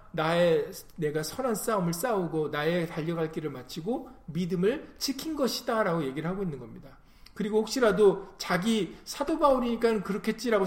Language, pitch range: Korean, 155-220 Hz